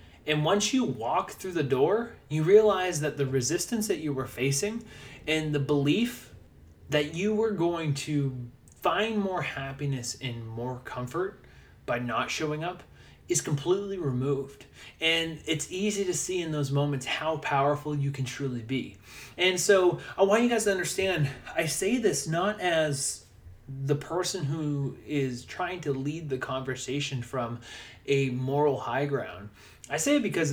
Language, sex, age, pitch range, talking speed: English, male, 20-39, 135-195 Hz, 160 wpm